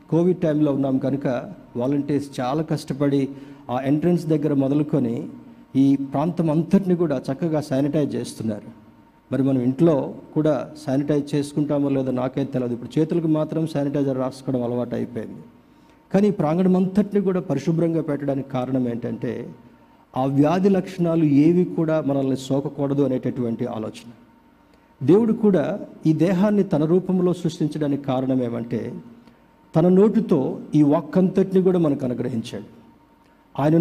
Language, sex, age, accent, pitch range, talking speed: Telugu, male, 50-69, native, 135-175 Hz, 120 wpm